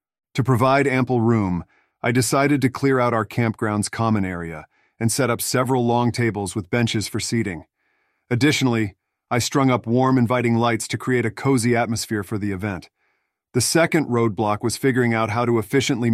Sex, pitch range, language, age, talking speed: male, 110-125 Hz, English, 40-59, 175 wpm